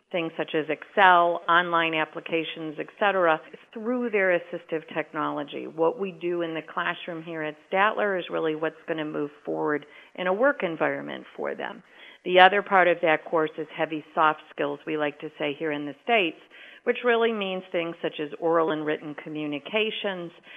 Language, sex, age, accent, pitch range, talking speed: English, female, 50-69, American, 155-185 Hz, 180 wpm